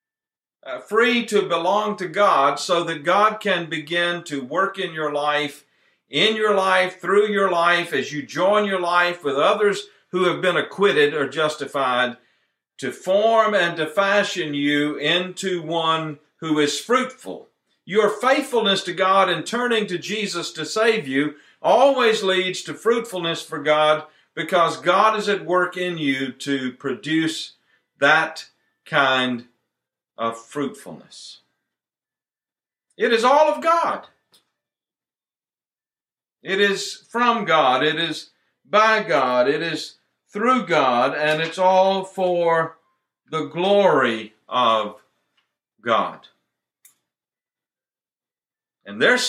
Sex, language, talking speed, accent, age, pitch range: male, English, 125 wpm, American, 50-69, 150-205 Hz